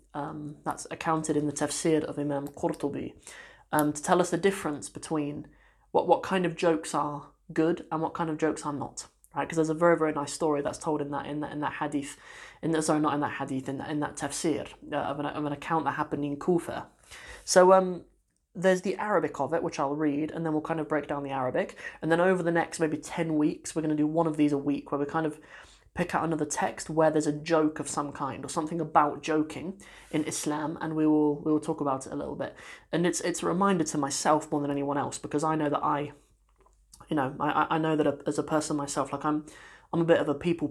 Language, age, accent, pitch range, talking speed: English, 20-39, British, 145-160 Hz, 250 wpm